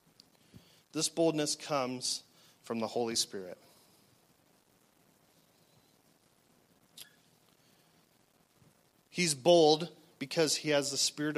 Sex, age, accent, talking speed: male, 40-59, American, 75 wpm